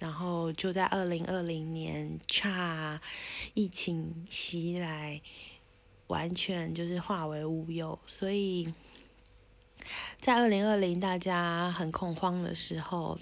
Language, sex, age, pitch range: Chinese, female, 20-39, 170-205 Hz